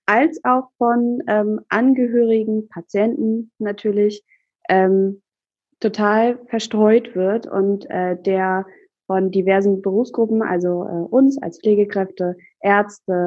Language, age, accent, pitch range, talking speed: German, 20-39, German, 190-225 Hz, 105 wpm